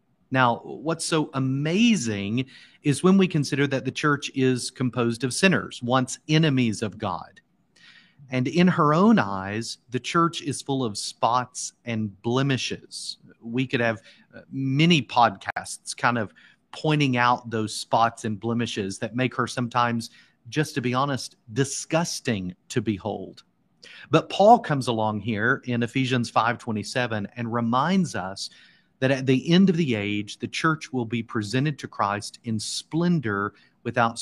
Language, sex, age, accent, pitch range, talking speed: English, male, 40-59, American, 115-145 Hz, 145 wpm